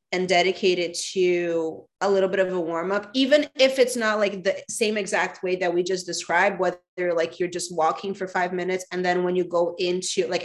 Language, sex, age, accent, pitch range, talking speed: English, female, 30-49, American, 175-195 Hz, 220 wpm